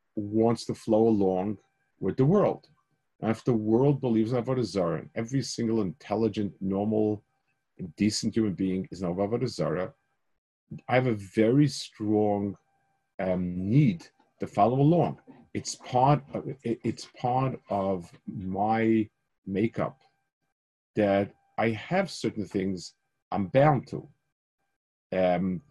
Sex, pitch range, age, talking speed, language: male, 105-135 Hz, 40-59, 130 wpm, English